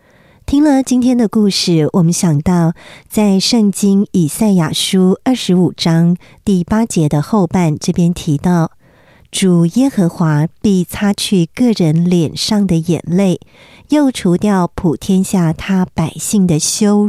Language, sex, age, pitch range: Chinese, male, 50-69, 165-210 Hz